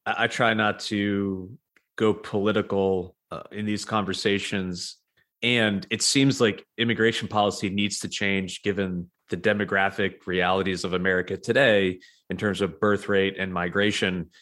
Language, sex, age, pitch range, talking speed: English, male, 30-49, 95-110 Hz, 135 wpm